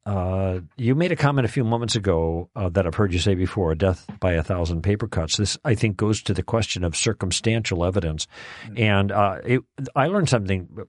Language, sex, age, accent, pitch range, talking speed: English, male, 50-69, American, 100-125 Hz, 210 wpm